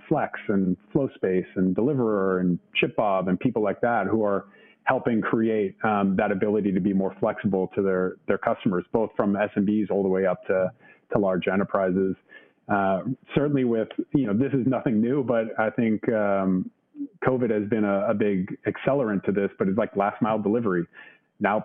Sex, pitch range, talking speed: male, 95-110 Hz, 185 wpm